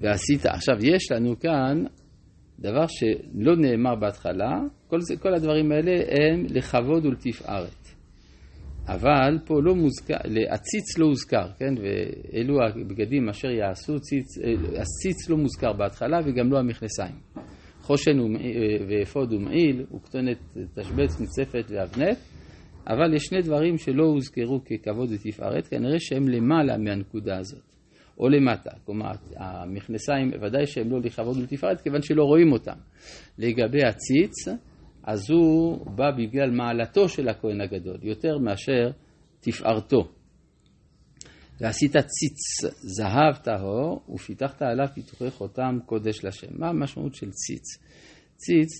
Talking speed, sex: 120 wpm, male